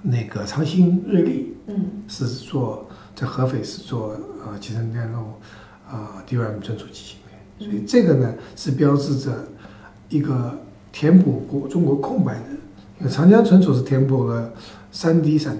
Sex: male